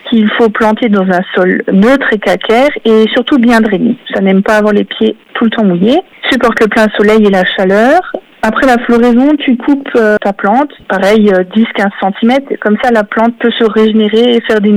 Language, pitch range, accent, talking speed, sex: French, 205-245 Hz, French, 210 wpm, female